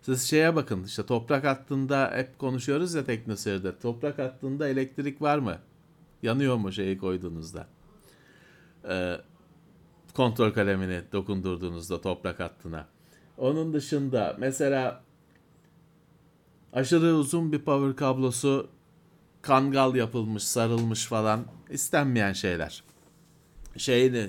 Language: Turkish